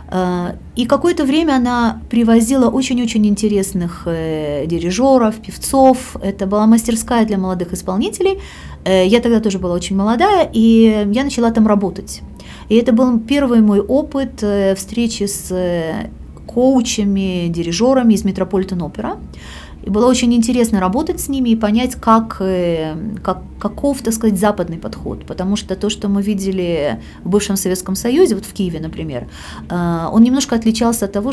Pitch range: 180-235 Hz